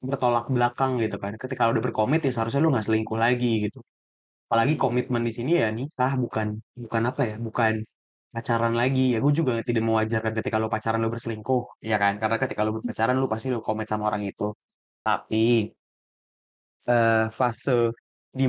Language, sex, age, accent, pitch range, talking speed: Indonesian, male, 20-39, native, 110-125 Hz, 180 wpm